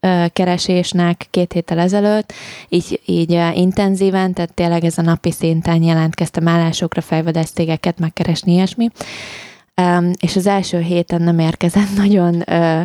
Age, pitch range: 20-39, 165-180 Hz